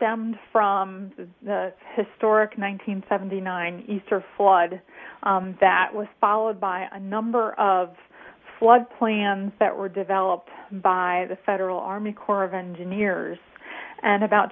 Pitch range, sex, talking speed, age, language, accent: 190-220 Hz, female, 120 wpm, 30-49, English, American